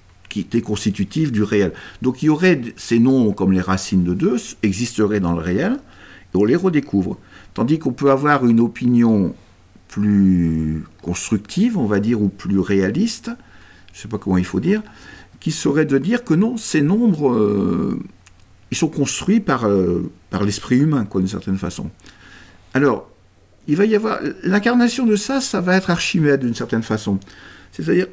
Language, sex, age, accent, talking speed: French, male, 60-79, French, 175 wpm